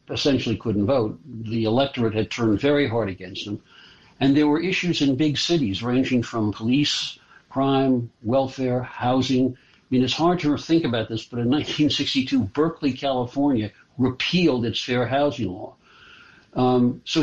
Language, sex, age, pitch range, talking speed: English, male, 60-79, 110-145 Hz, 155 wpm